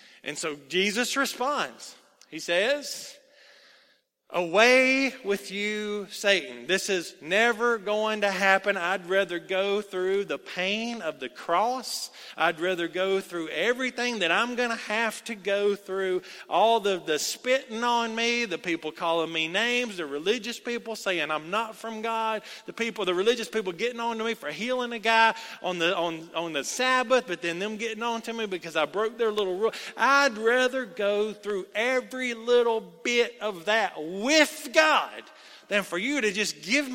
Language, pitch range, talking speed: English, 190-245 Hz, 170 wpm